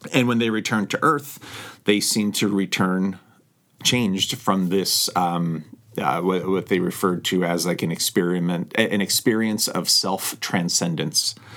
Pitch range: 90-110 Hz